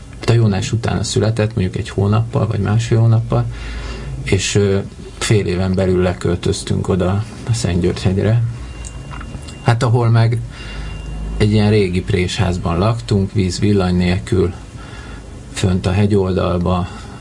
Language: Hungarian